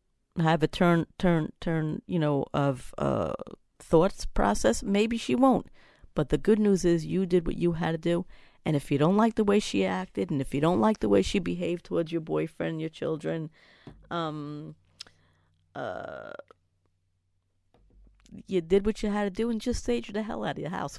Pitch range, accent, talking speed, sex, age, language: 150-190 Hz, American, 190 wpm, female, 40-59, English